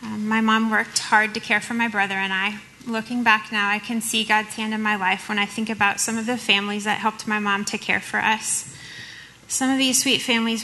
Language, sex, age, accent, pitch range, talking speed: English, female, 30-49, American, 210-235 Hz, 245 wpm